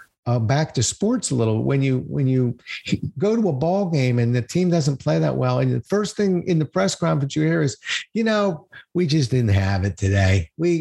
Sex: male